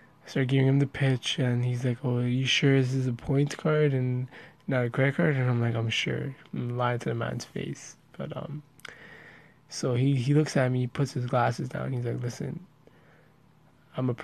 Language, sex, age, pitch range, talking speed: English, male, 20-39, 125-140 Hz, 220 wpm